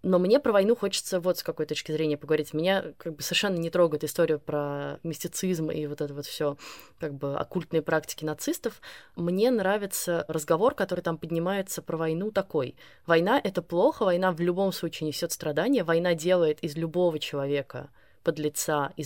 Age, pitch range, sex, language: 20-39, 150-180 Hz, female, Russian